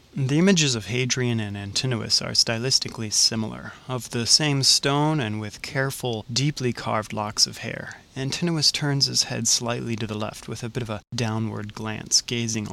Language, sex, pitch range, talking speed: English, male, 110-130 Hz, 175 wpm